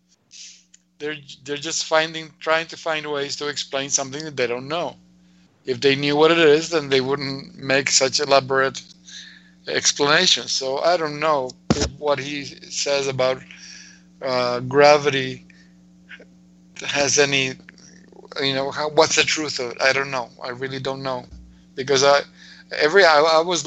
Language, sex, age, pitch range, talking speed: English, male, 50-69, 120-145 Hz, 155 wpm